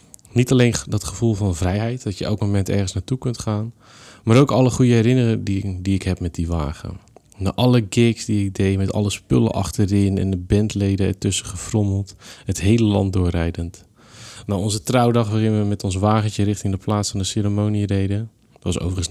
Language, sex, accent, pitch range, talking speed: Dutch, male, Dutch, 95-115 Hz, 195 wpm